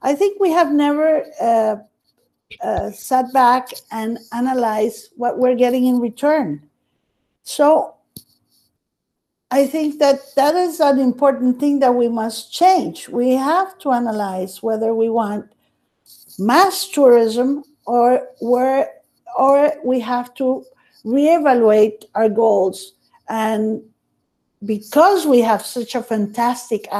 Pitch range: 225-290 Hz